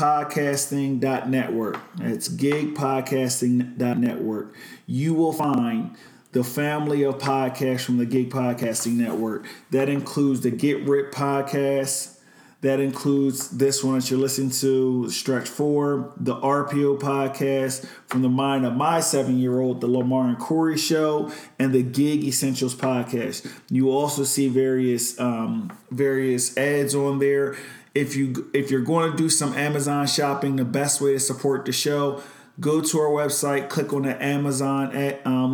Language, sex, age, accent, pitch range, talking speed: English, male, 40-59, American, 125-145 Hz, 150 wpm